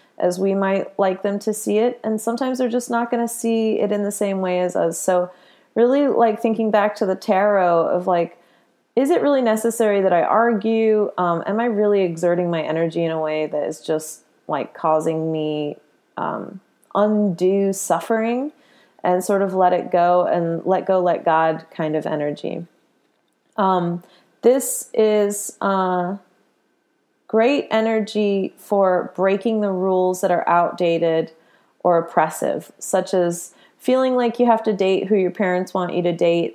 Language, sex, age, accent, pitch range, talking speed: English, female, 30-49, American, 170-215 Hz, 170 wpm